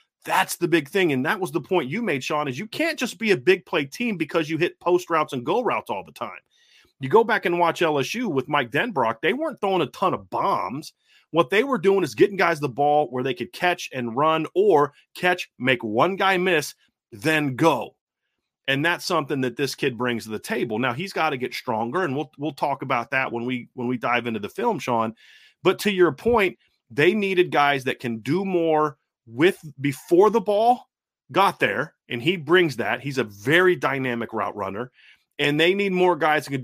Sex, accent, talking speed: male, American, 225 wpm